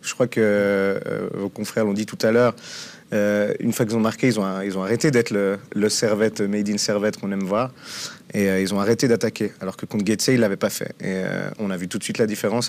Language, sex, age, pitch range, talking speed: French, male, 30-49, 100-125 Hz, 270 wpm